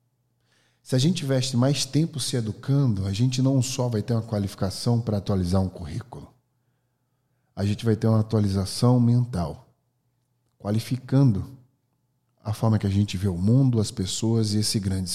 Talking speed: 160 wpm